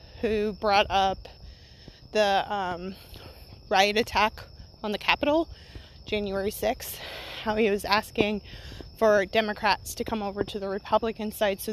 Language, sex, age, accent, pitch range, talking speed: English, female, 20-39, American, 195-225 Hz, 135 wpm